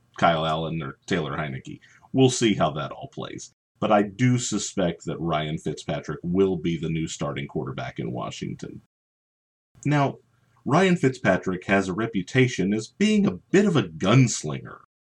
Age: 40-59